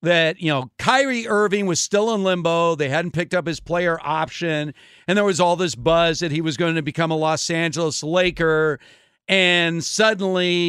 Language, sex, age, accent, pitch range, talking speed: English, male, 50-69, American, 160-210 Hz, 190 wpm